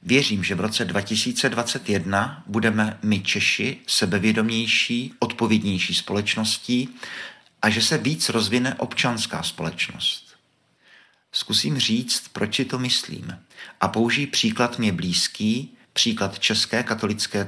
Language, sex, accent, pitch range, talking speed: Czech, male, native, 100-120 Hz, 110 wpm